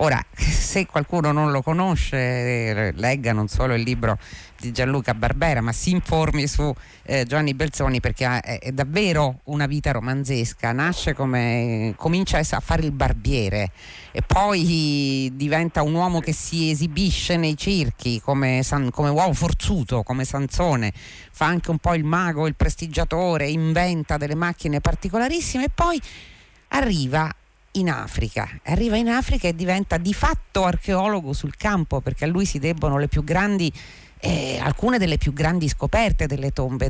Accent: native